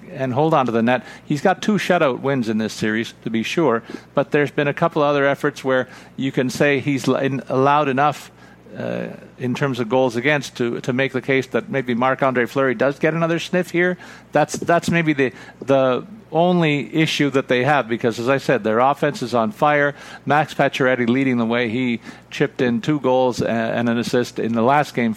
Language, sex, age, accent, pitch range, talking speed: English, male, 50-69, American, 115-145 Hz, 210 wpm